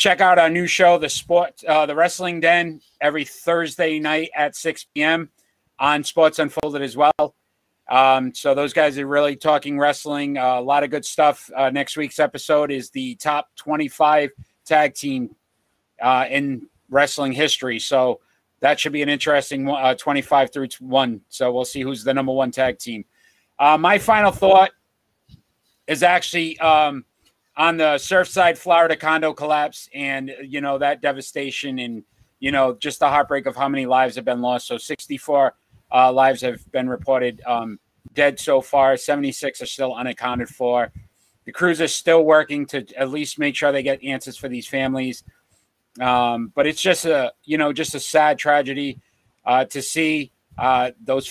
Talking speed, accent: 175 wpm, American